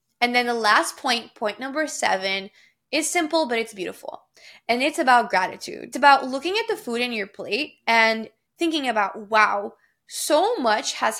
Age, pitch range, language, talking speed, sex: 10-29, 210-270 Hz, English, 175 wpm, female